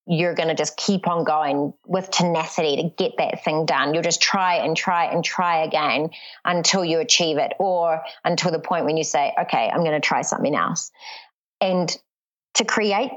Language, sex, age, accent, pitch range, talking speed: English, female, 30-49, Australian, 165-205 Hz, 195 wpm